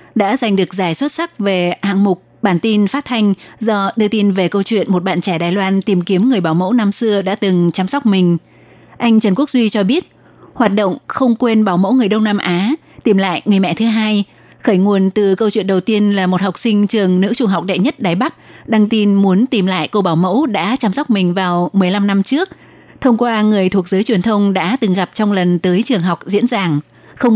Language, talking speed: Vietnamese, 245 wpm